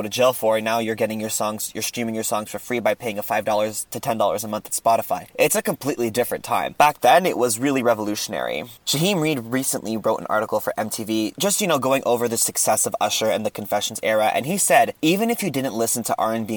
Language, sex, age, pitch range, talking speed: English, male, 20-39, 115-140 Hz, 245 wpm